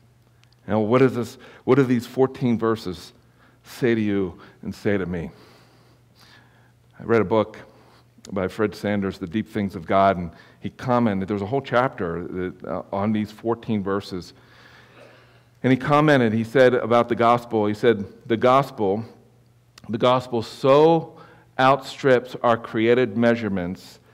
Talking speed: 135 wpm